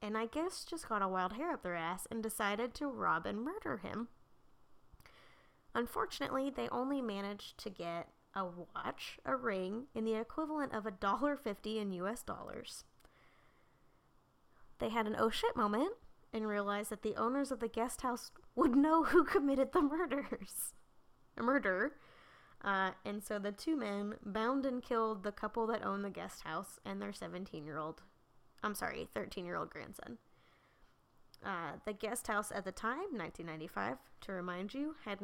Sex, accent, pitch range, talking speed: female, American, 190-275 Hz, 160 wpm